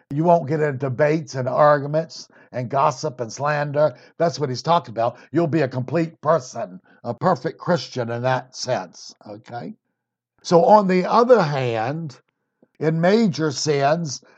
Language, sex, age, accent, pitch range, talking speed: English, male, 60-79, American, 130-160 Hz, 150 wpm